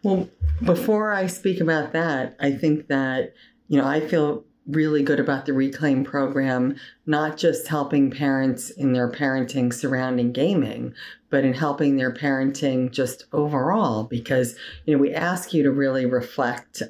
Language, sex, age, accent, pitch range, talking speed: English, female, 40-59, American, 120-155 Hz, 155 wpm